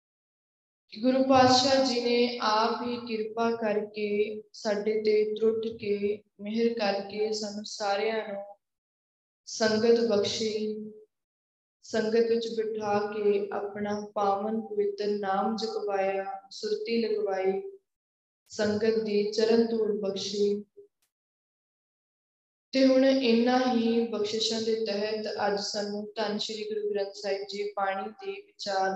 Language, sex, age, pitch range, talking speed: Punjabi, female, 20-39, 205-230 Hz, 110 wpm